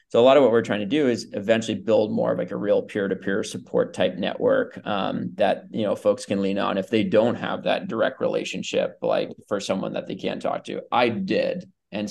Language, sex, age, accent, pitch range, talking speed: English, male, 20-39, American, 105-120 Hz, 235 wpm